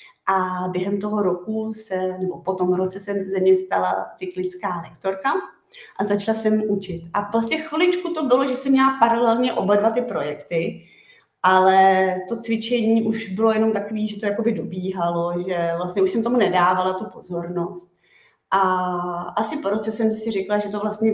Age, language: 20-39, Czech